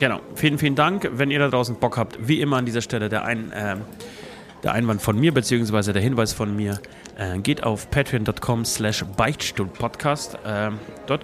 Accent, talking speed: German, 185 wpm